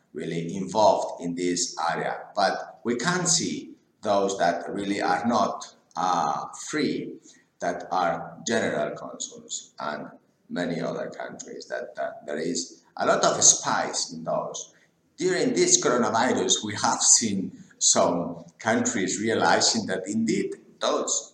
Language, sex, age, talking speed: English, male, 50-69, 130 wpm